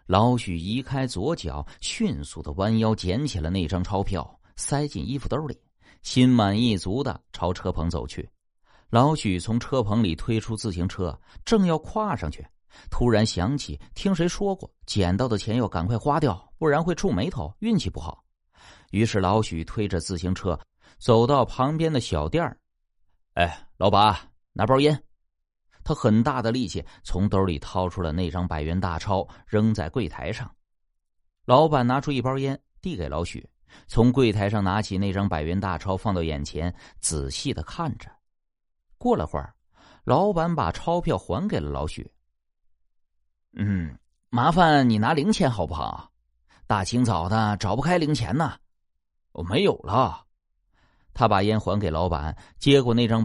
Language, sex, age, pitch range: Chinese, male, 30-49, 85-125 Hz